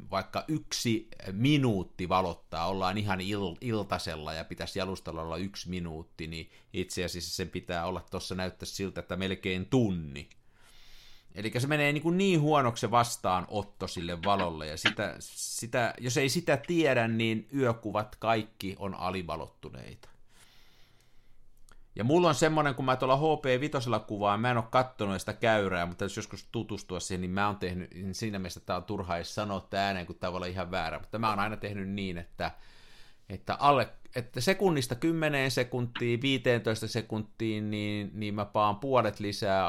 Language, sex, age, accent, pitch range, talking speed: Finnish, male, 50-69, native, 90-120 Hz, 155 wpm